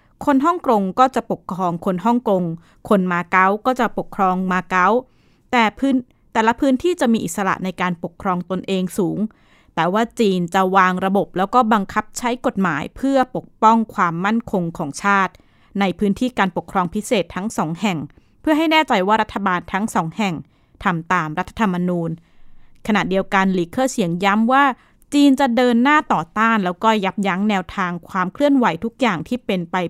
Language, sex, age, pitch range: Thai, female, 20-39, 185-240 Hz